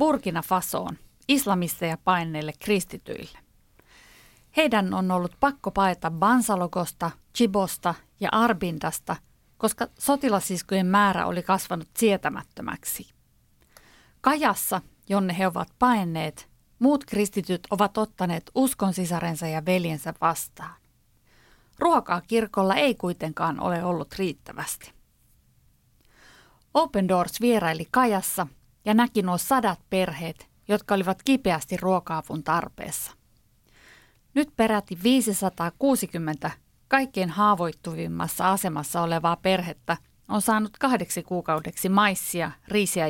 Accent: native